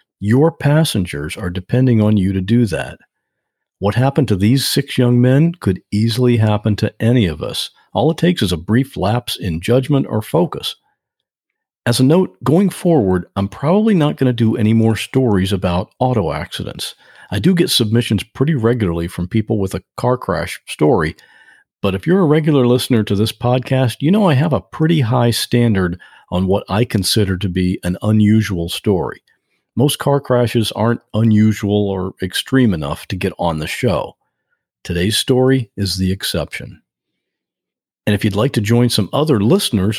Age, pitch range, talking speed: 50-69, 100-130 Hz, 175 wpm